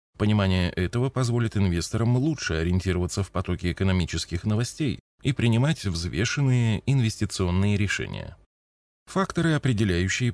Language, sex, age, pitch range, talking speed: Russian, male, 20-39, 90-125 Hz, 100 wpm